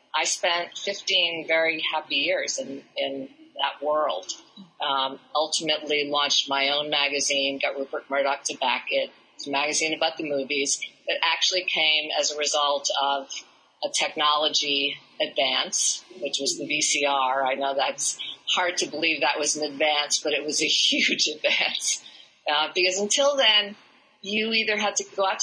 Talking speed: 160 wpm